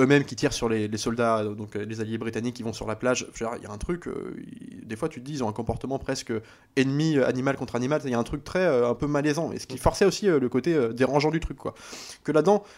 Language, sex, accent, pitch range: French, male, French, 115-150 Hz